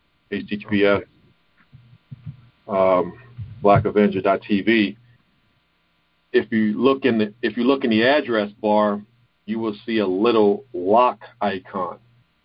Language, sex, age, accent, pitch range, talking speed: English, male, 50-69, American, 100-120 Hz, 100 wpm